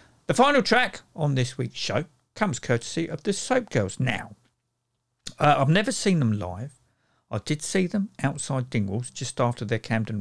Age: 50-69